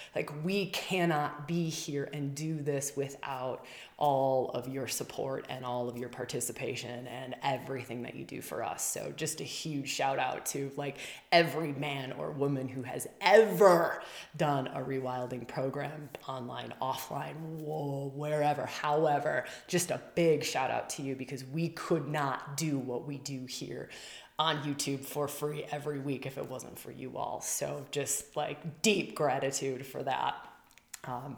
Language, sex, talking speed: English, female, 160 wpm